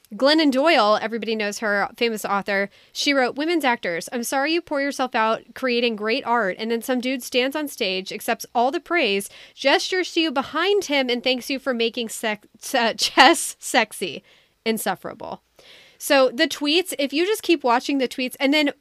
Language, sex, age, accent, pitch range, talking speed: English, female, 10-29, American, 225-280 Hz, 185 wpm